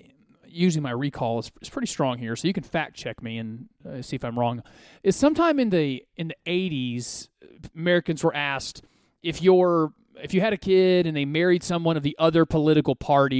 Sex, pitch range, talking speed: male, 135-195 Hz, 195 wpm